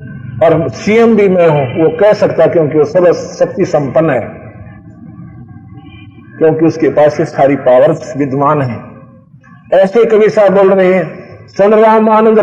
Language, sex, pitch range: Hindi, male, 155-205 Hz